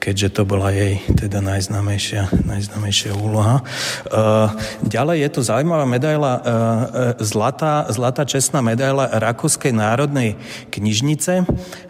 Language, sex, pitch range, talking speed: Slovak, male, 110-130 Hz, 90 wpm